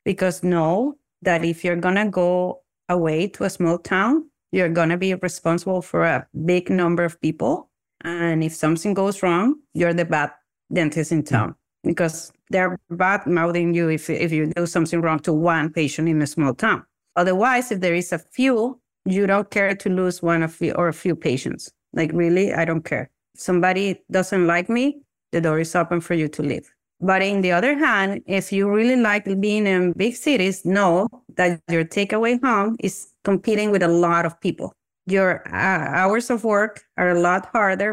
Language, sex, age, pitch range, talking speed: English, female, 30-49, 170-200 Hz, 190 wpm